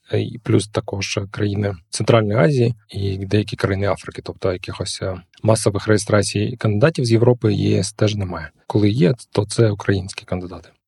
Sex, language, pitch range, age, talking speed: male, Ukrainian, 100-115 Hz, 20-39, 140 wpm